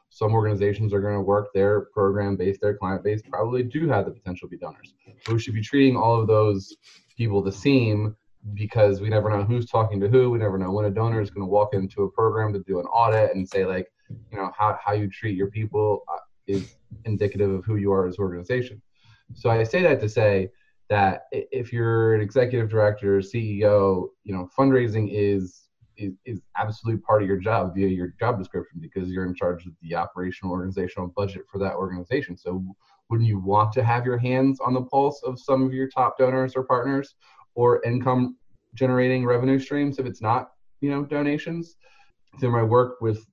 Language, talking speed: English, 210 wpm